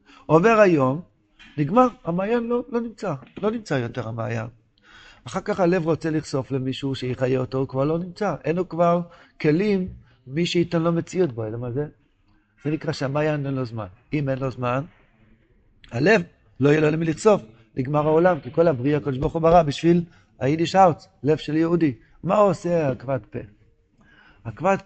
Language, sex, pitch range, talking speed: Hebrew, male, 130-180 Hz, 160 wpm